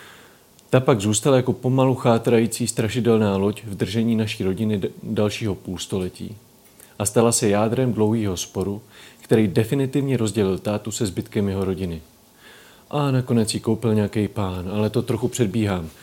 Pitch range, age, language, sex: 100-125 Hz, 40-59, Czech, male